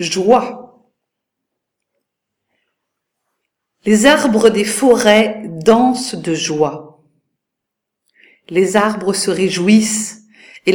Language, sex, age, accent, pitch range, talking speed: French, female, 50-69, French, 180-230 Hz, 75 wpm